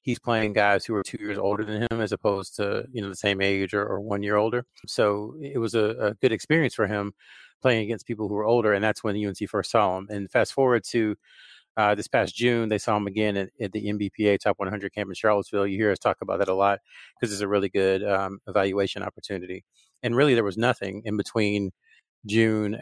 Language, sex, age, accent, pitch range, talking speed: English, male, 40-59, American, 100-110 Hz, 235 wpm